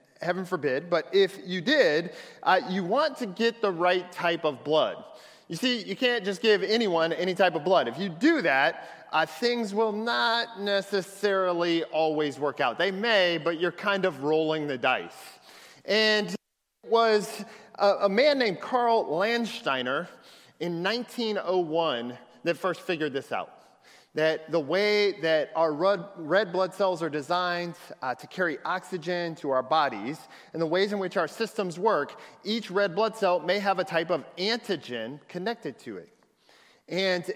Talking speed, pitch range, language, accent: 165 wpm, 160-210 Hz, English, American